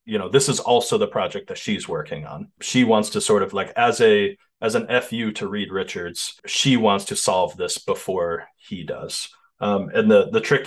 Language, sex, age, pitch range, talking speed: English, male, 30-49, 100-165 Hz, 215 wpm